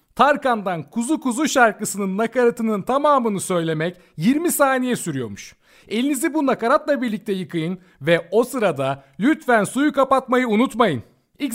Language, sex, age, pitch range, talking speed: Turkish, male, 40-59, 165-240 Hz, 120 wpm